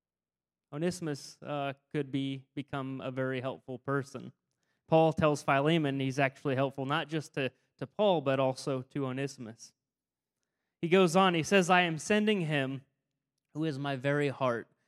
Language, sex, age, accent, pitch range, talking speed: English, male, 30-49, American, 135-160 Hz, 155 wpm